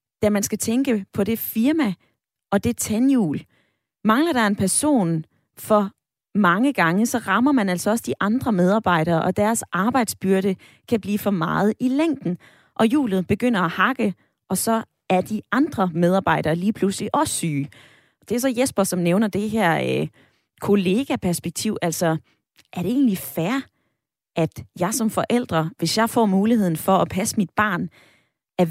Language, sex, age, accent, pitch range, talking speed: Danish, female, 20-39, native, 170-230 Hz, 165 wpm